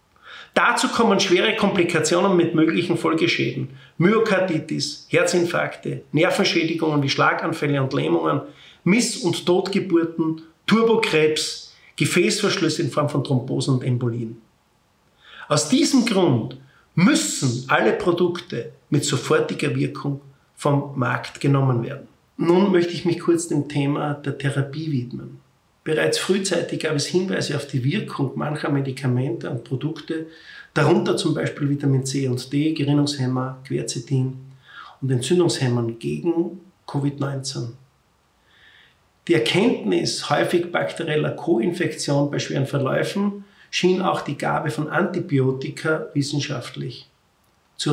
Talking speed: 110 wpm